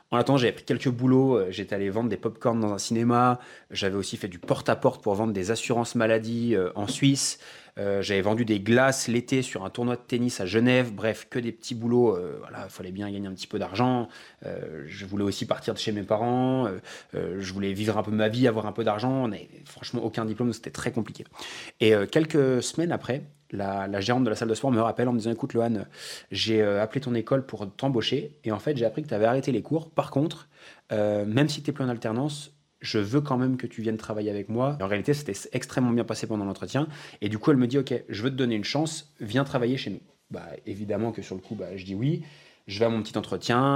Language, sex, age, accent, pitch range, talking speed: French, male, 20-39, French, 105-135 Hz, 250 wpm